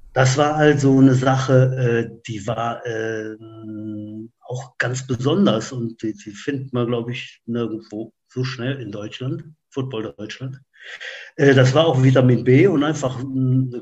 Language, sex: German, male